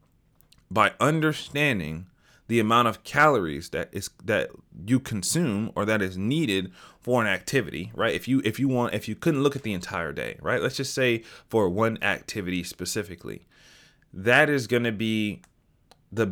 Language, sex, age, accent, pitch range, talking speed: English, male, 30-49, American, 95-120 Hz, 170 wpm